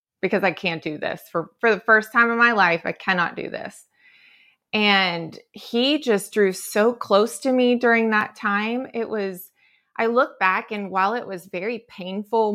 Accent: American